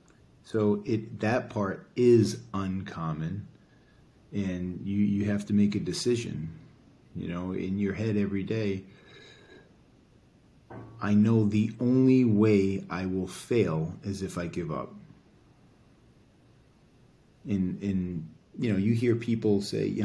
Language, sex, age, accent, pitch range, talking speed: English, male, 30-49, American, 100-115 Hz, 130 wpm